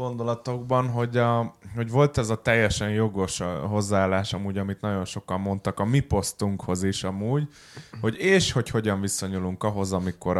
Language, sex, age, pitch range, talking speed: Hungarian, male, 20-39, 95-120 Hz, 160 wpm